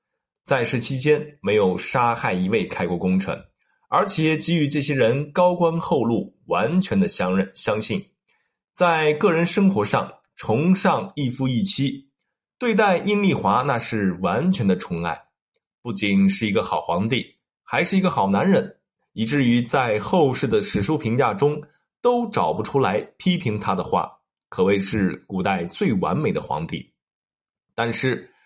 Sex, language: male, Chinese